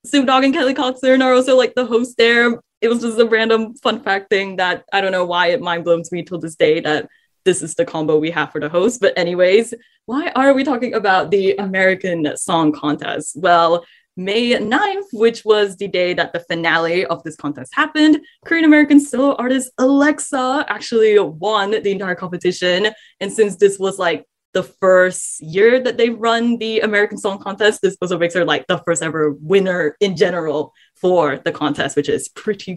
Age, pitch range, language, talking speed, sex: 10-29, 175-235 Hz, English, 195 wpm, female